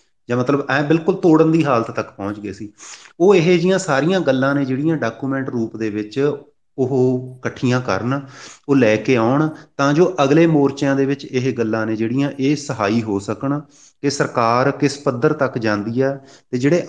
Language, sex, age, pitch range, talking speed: Punjabi, male, 30-49, 115-140 Hz, 185 wpm